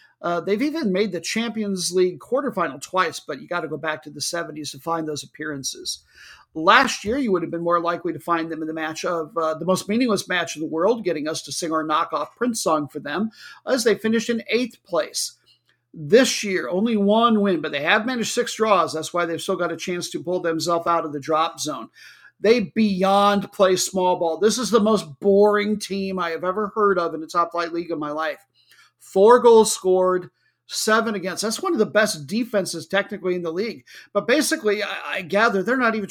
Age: 50-69